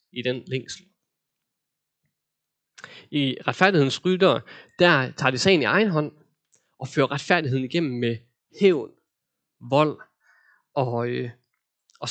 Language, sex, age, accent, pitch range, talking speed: Danish, male, 20-39, native, 130-175 Hz, 115 wpm